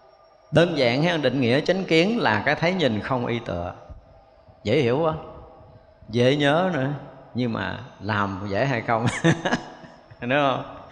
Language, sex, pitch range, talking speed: Vietnamese, male, 130-205 Hz, 155 wpm